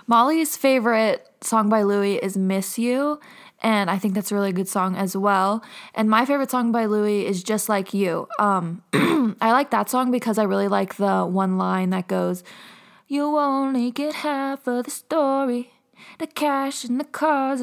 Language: English